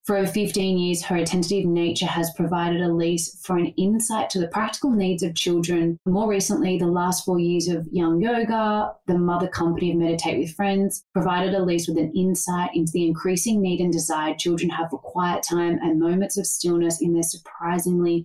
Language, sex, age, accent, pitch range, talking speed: English, female, 30-49, Australian, 165-185 Hz, 195 wpm